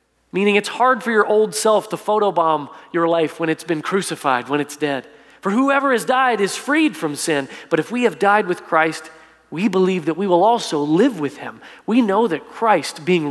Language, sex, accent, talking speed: English, male, American, 210 wpm